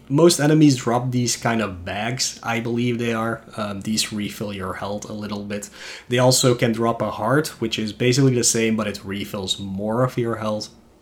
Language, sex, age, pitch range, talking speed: English, male, 20-39, 100-125 Hz, 200 wpm